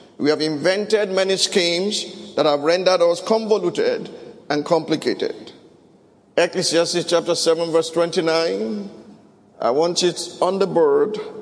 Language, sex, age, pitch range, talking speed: English, male, 50-69, 175-240 Hz, 120 wpm